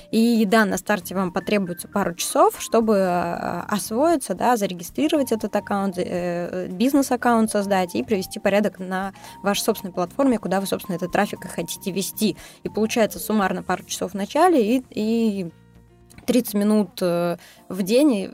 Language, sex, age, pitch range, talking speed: Russian, female, 20-39, 195-250 Hz, 145 wpm